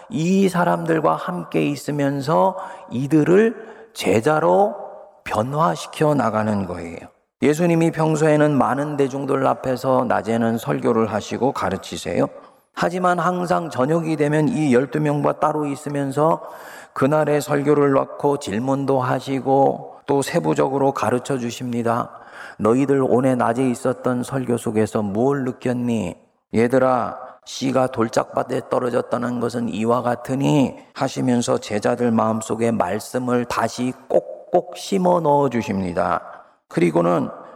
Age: 40-59